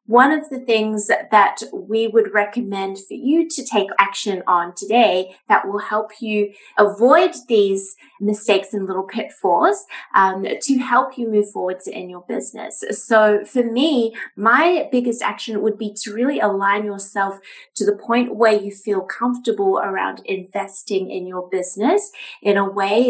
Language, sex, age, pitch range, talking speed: English, female, 20-39, 195-250 Hz, 160 wpm